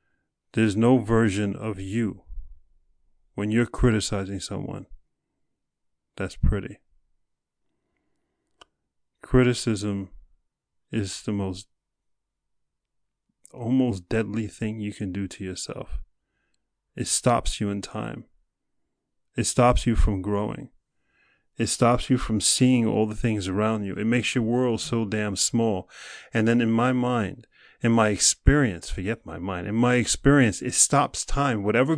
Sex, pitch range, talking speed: male, 100-130 Hz, 130 wpm